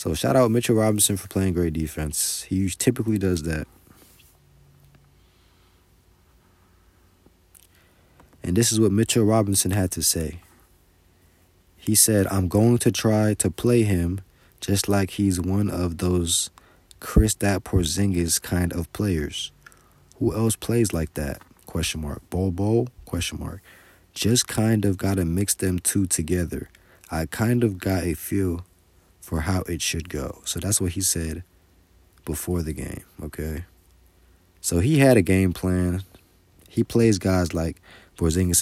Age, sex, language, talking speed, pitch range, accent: 20-39, male, English, 145 wpm, 85-100 Hz, American